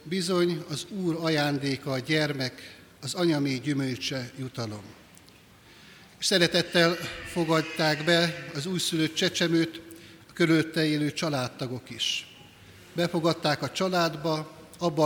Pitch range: 145-170 Hz